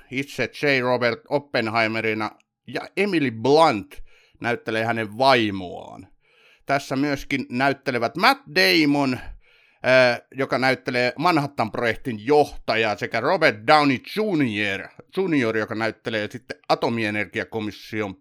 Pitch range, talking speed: 110-135 Hz, 90 wpm